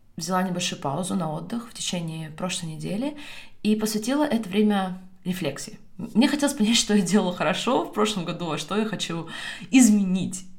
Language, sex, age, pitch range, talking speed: Russian, female, 20-39, 160-215 Hz, 165 wpm